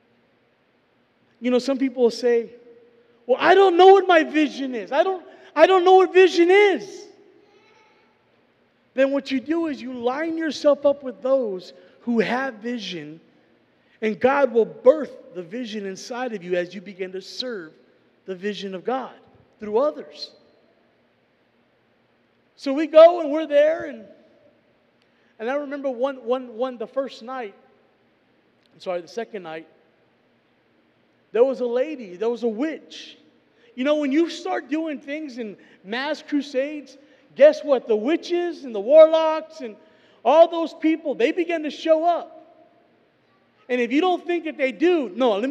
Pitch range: 240-315 Hz